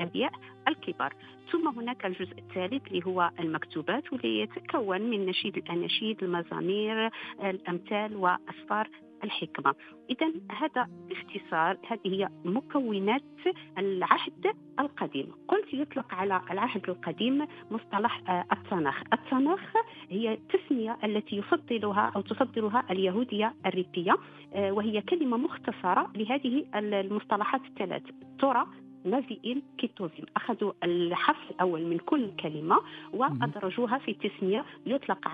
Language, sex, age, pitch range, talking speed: Arabic, female, 50-69, 175-260 Hz, 100 wpm